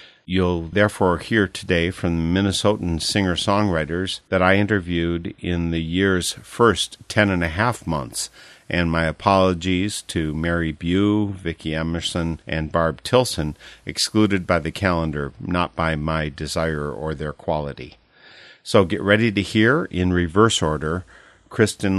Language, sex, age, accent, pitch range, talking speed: English, male, 50-69, American, 80-100 Hz, 140 wpm